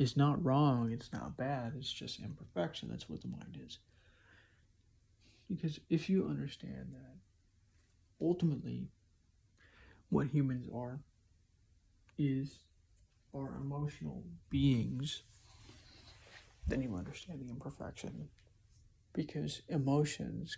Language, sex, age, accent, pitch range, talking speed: English, male, 50-69, American, 100-135 Hz, 100 wpm